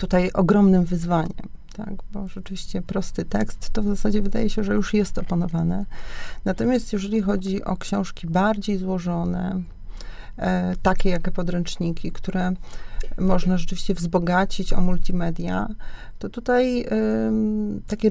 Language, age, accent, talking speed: Polish, 40-59, native, 115 wpm